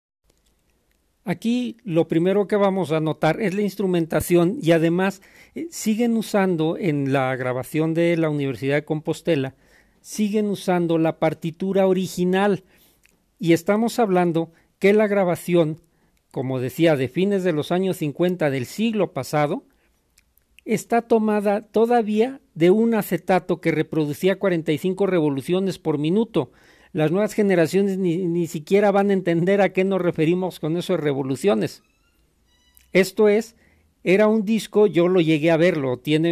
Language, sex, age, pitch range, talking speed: Spanish, male, 50-69, 160-195 Hz, 140 wpm